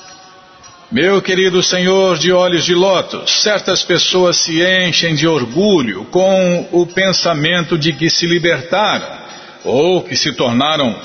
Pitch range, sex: 145-180 Hz, male